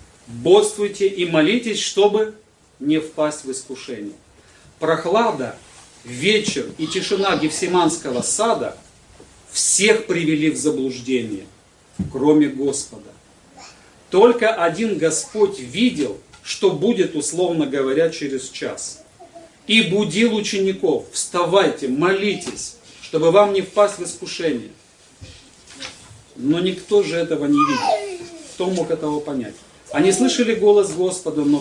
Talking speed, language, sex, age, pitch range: 105 wpm, Russian, male, 40-59, 145-205 Hz